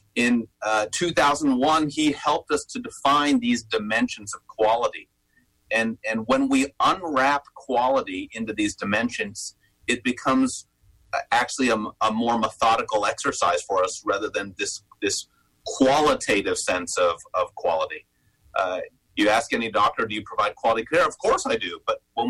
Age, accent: 30-49, American